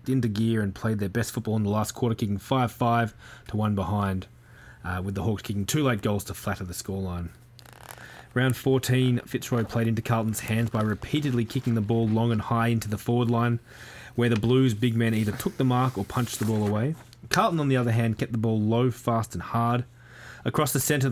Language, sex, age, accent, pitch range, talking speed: English, male, 20-39, Australian, 110-125 Hz, 220 wpm